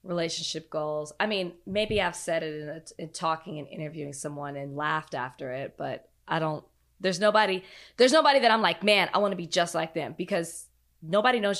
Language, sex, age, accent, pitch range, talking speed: English, female, 20-39, American, 165-215 Hz, 205 wpm